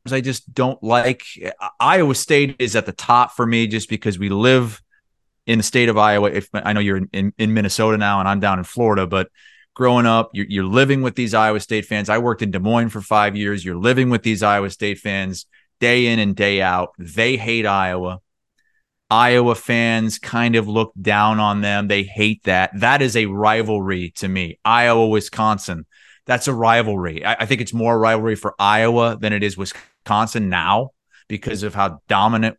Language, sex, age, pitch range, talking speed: English, male, 30-49, 100-115 Hz, 195 wpm